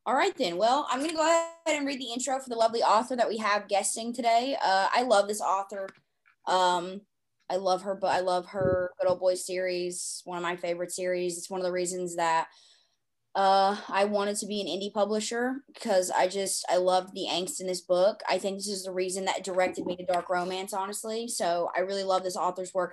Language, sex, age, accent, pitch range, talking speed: English, female, 20-39, American, 185-230 Hz, 230 wpm